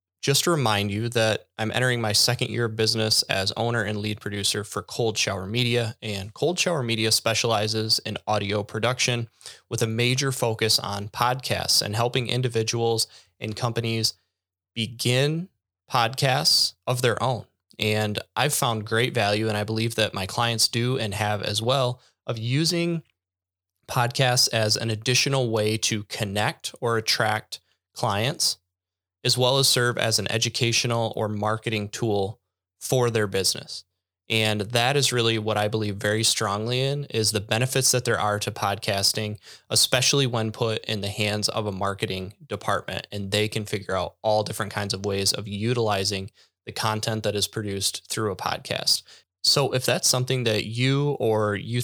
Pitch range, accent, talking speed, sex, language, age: 105-120 Hz, American, 165 wpm, male, English, 20-39